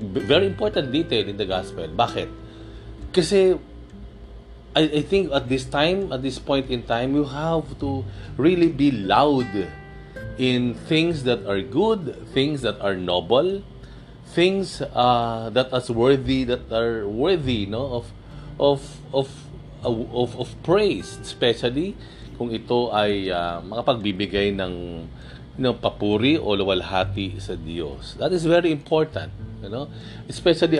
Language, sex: Filipino, male